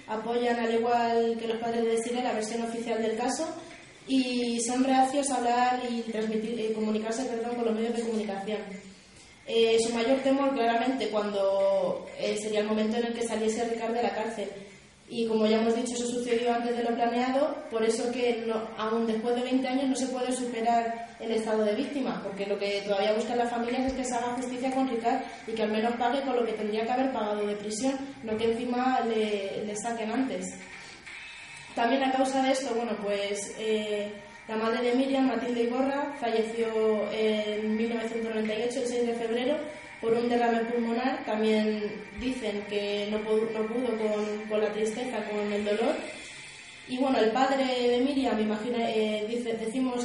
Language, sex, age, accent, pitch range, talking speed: Spanish, female, 20-39, Spanish, 220-245 Hz, 185 wpm